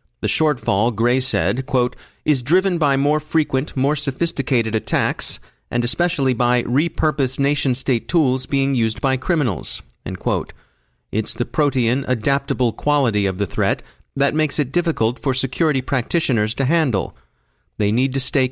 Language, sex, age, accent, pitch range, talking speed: English, male, 40-59, American, 115-140 Hz, 135 wpm